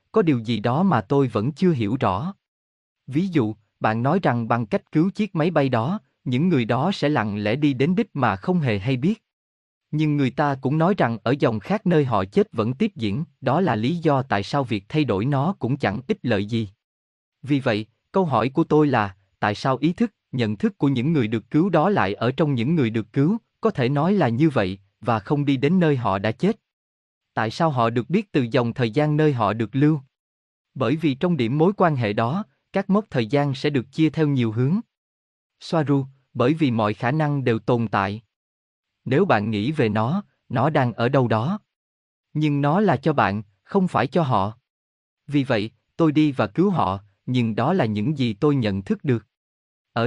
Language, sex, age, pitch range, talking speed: Vietnamese, male, 20-39, 110-160 Hz, 220 wpm